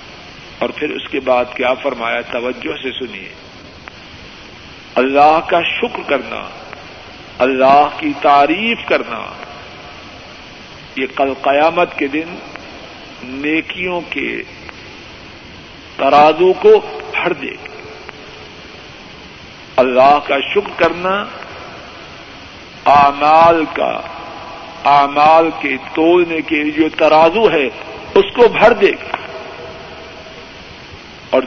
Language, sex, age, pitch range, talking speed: Urdu, male, 50-69, 140-170 Hz, 95 wpm